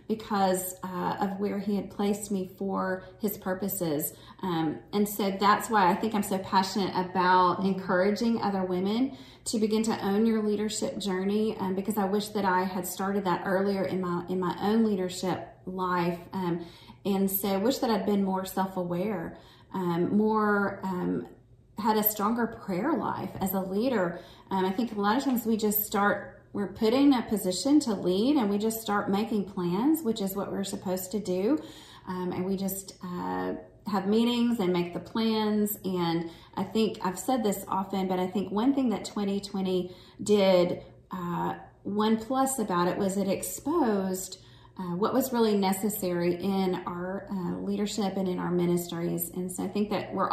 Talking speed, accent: 180 wpm, American